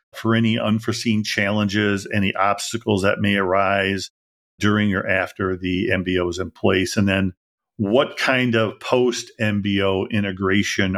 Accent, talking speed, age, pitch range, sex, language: American, 130 wpm, 50-69, 95-110 Hz, male, English